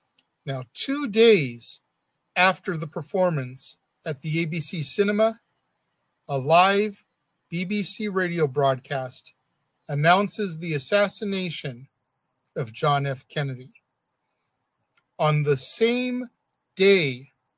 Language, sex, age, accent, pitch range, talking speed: English, male, 40-59, American, 135-185 Hz, 90 wpm